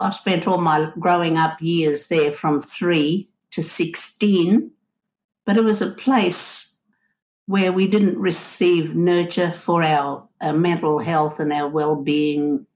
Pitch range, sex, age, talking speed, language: 155-195 Hz, female, 60-79, 140 wpm, English